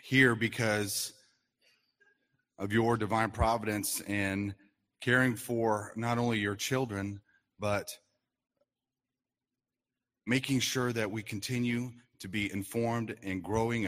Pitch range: 100-125 Hz